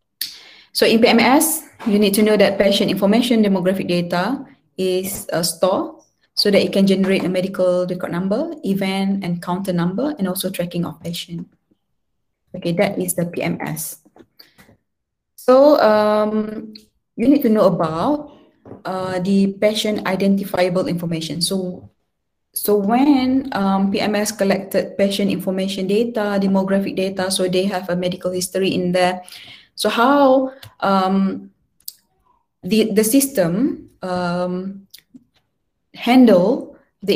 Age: 20-39